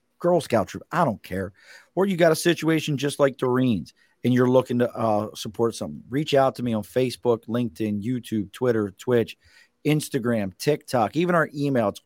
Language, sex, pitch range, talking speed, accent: English, male, 105-130 Hz, 185 wpm, American